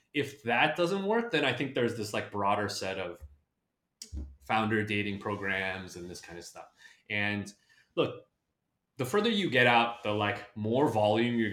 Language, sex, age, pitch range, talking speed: English, male, 20-39, 100-120 Hz, 170 wpm